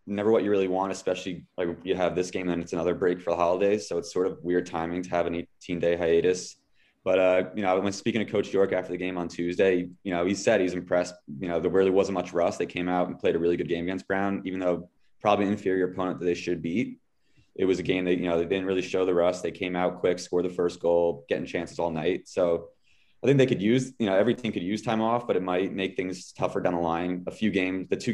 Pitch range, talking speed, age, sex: 85-100 Hz, 275 wpm, 20-39, male